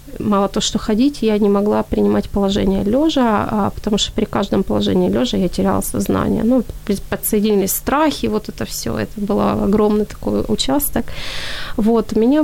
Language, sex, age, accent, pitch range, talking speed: Ukrainian, female, 20-39, native, 200-230 Hz, 155 wpm